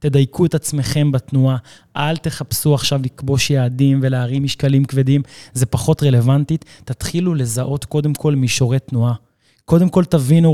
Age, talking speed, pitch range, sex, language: 20-39, 135 wpm, 125-150 Hz, male, Hebrew